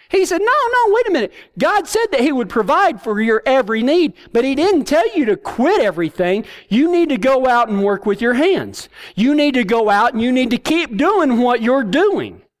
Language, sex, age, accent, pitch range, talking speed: English, male, 40-59, American, 230-330 Hz, 235 wpm